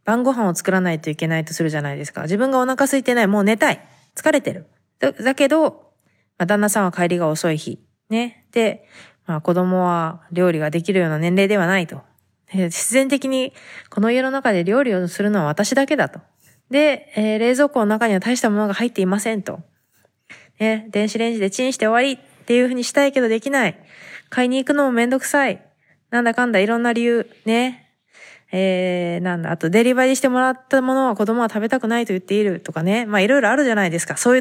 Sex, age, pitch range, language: female, 20-39, 190-260 Hz, Japanese